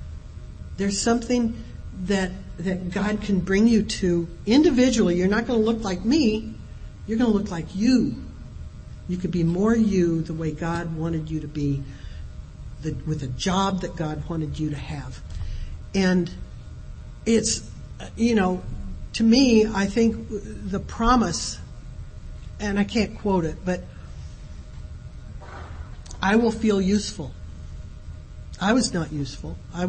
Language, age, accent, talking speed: English, 60-79, American, 140 wpm